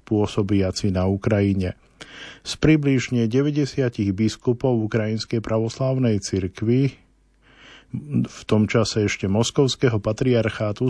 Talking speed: 90 wpm